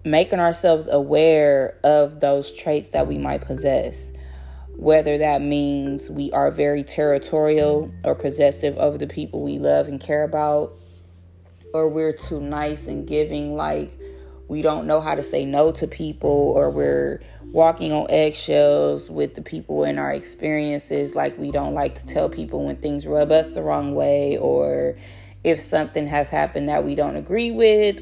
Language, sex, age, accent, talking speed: English, female, 20-39, American, 165 wpm